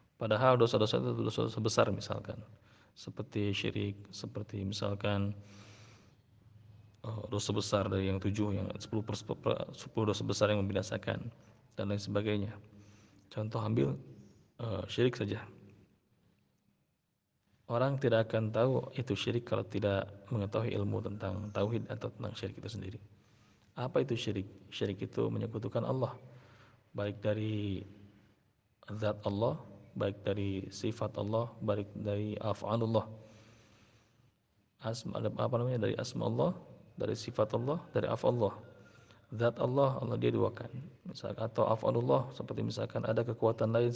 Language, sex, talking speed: Malay, male, 125 wpm